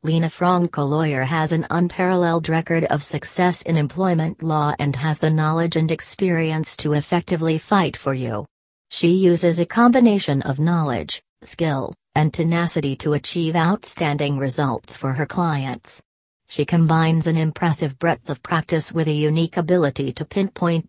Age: 40-59